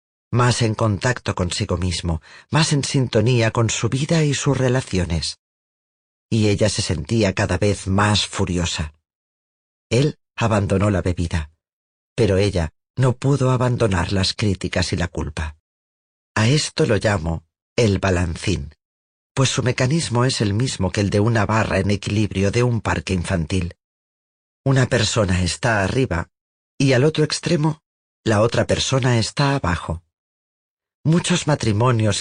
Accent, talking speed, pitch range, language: Spanish, 140 wpm, 90-130 Hz, Spanish